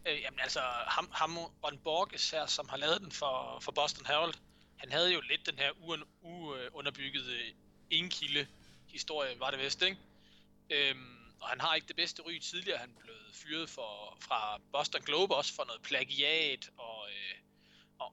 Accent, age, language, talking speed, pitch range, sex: native, 20-39, Danish, 155 wpm, 130-170 Hz, male